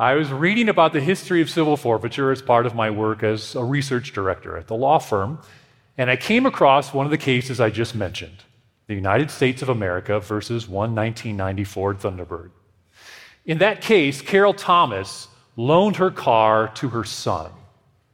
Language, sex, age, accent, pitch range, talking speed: English, male, 40-59, American, 115-160 Hz, 175 wpm